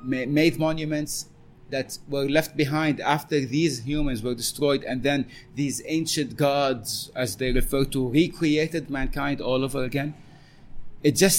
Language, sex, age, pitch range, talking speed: English, male, 30-49, 125-150 Hz, 140 wpm